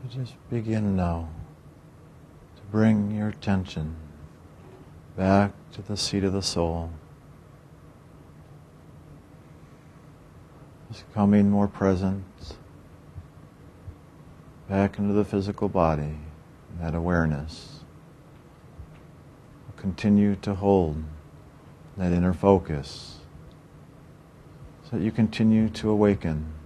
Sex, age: male, 50-69